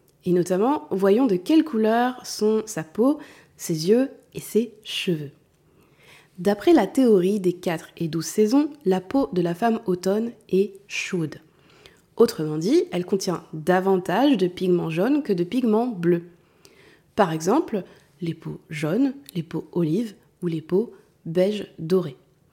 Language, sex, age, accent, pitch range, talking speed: French, female, 20-39, French, 175-245 Hz, 145 wpm